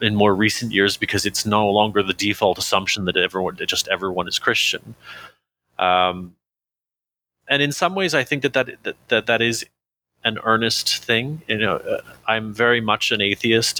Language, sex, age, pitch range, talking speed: English, male, 30-49, 100-120 Hz, 180 wpm